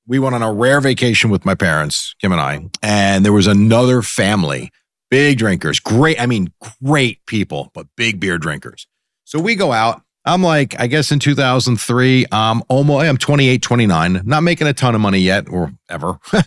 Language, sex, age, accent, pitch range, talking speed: English, male, 40-59, American, 105-140 Hz, 175 wpm